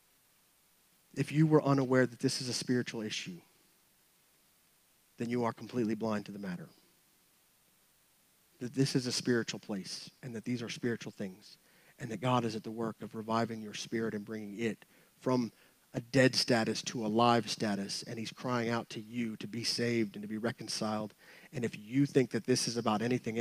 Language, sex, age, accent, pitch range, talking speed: English, male, 30-49, American, 120-195 Hz, 190 wpm